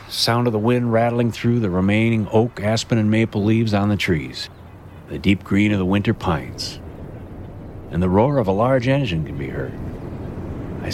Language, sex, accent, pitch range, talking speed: English, male, American, 95-120 Hz, 185 wpm